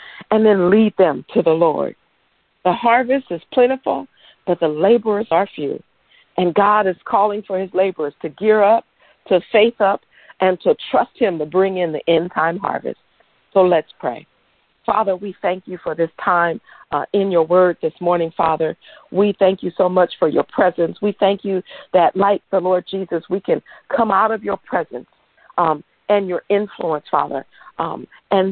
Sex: female